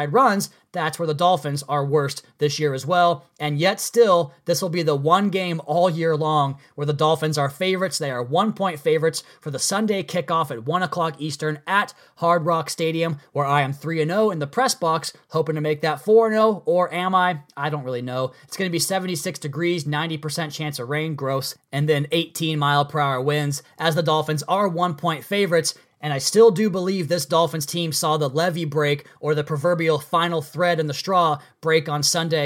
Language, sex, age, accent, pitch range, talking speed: English, male, 20-39, American, 150-175 Hz, 215 wpm